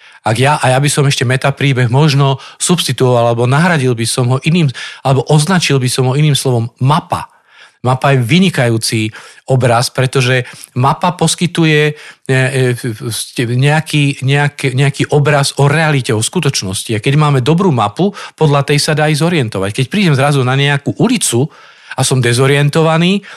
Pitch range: 125-155 Hz